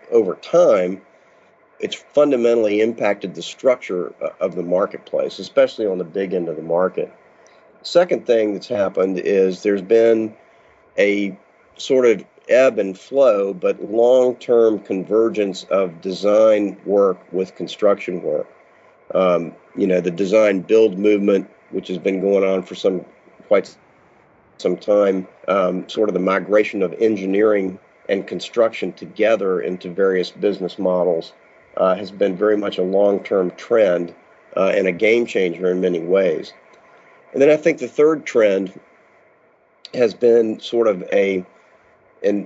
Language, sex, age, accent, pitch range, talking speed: English, male, 40-59, American, 95-115 Hz, 140 wpm